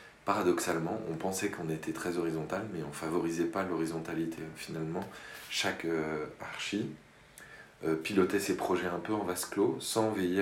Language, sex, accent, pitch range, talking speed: French, male, French, 80-90 Hz, 160 wpm